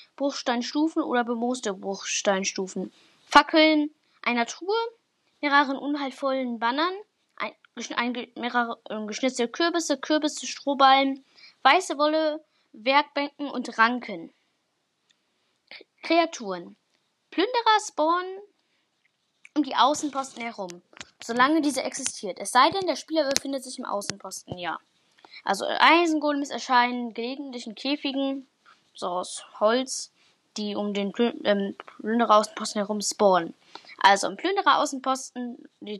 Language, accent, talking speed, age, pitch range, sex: German, German, 105 wpm, 10-29, 235-310 Hz, female